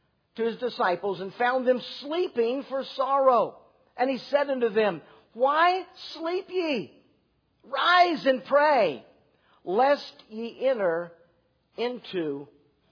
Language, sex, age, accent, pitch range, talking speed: English, male, 50-69, American, 235-290 Hz, 110 wpm